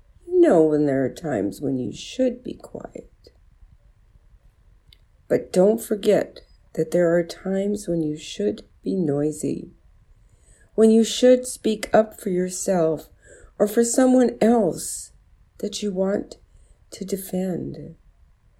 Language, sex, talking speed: English, female, 125 wpm